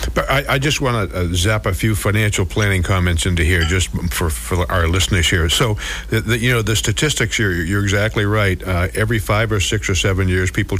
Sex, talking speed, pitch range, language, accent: male, 220 wpm, 95-120 Hz, English, American